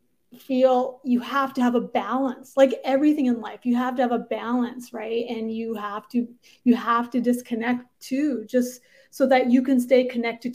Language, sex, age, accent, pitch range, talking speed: English, female, 30-49, American, 230-270 Hz, 195 wpm